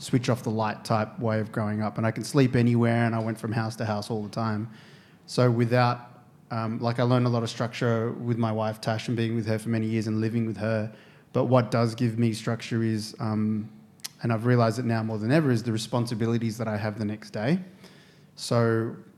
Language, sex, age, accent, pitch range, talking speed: English, male, 20-39, Australian, 110-125 Hz, 235 wpm